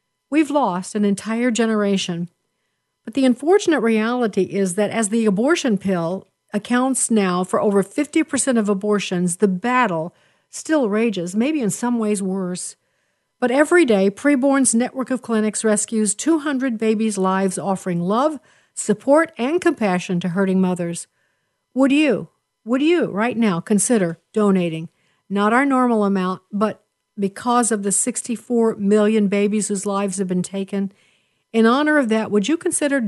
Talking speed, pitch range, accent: 145 wpm, 200-255 Hz, American